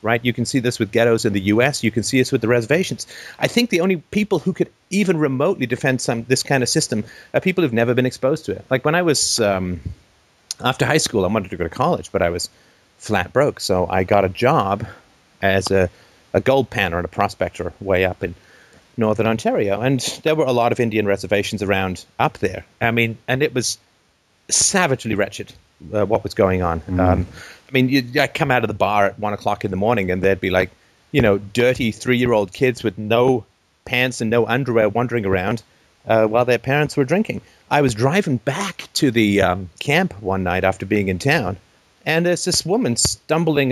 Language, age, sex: English, 30-49, male